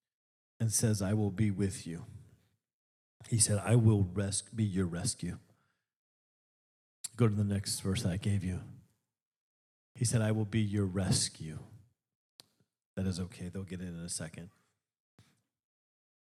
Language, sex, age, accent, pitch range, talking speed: English, male, 40-59, American, 100-125 Hz, 140 wpm